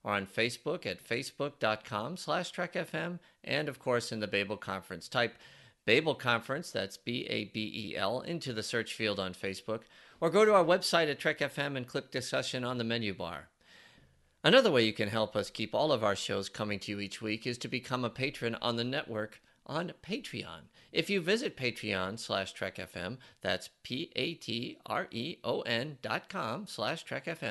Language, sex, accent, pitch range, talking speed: English, male, American, 105-150 Hz, 170 wpm